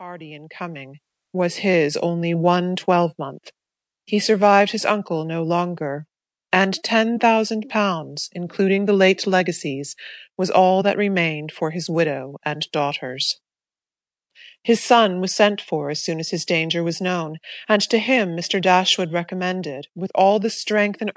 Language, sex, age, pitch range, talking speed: English, female, 30-49, 165-200 Hz, 155 wpm